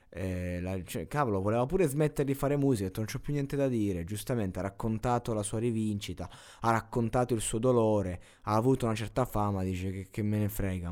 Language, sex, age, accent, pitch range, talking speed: Italian, male, 20-39, native, 95-115 Hz, 215 wpm